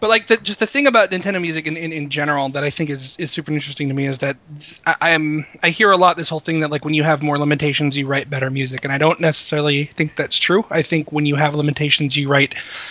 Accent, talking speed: American, 280 wpm